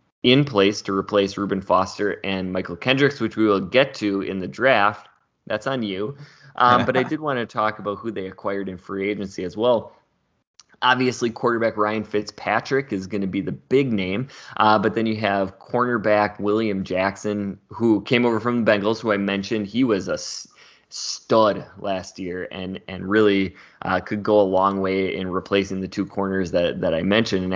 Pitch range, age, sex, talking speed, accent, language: 95-110 Hz, 20-39, male, 195 wpm, American, English